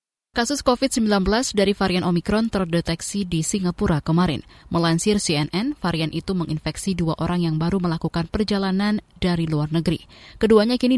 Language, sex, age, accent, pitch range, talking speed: Indonesian, female, 20-39, native, 165-205 Hz, 135 wpm